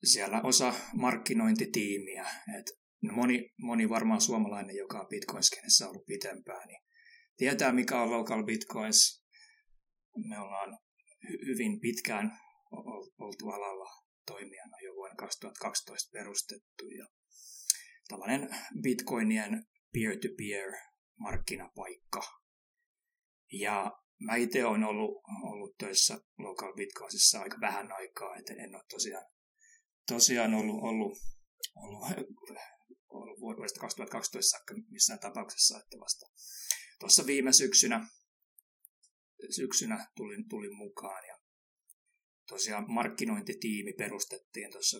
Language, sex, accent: Finnish, male, native